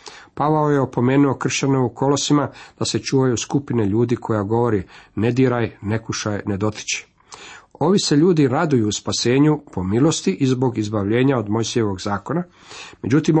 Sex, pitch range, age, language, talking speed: male, 105-135 Hz, 50-69, Croatian, 150 wpm